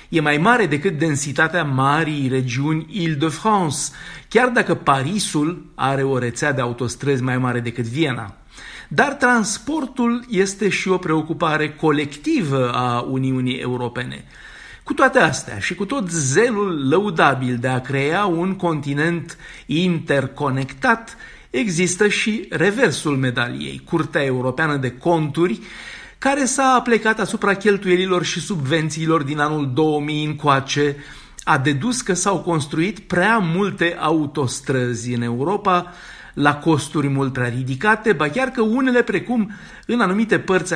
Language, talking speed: Romanian, 125 wpm